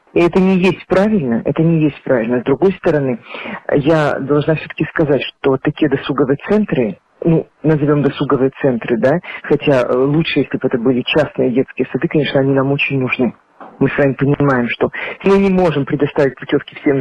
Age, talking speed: 40-59, 175 wpm